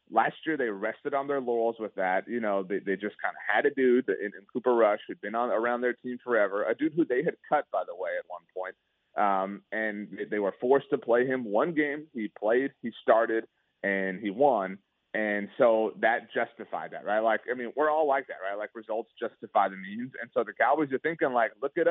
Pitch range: 105-135 Hz